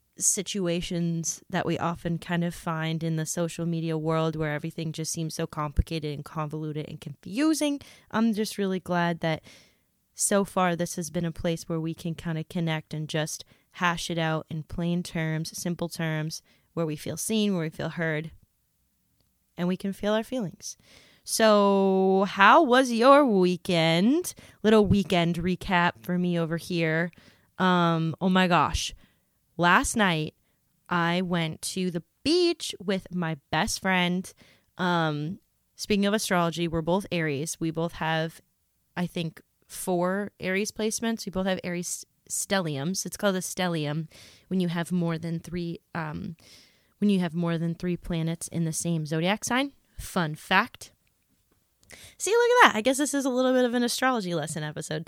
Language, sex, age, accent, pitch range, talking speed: English, female, 20-39, American, 165-195 Hz, 165 wpm